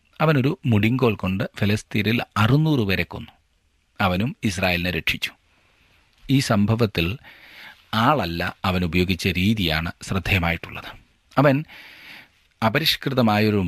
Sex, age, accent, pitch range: male, 40-59, native, 90-130 Hz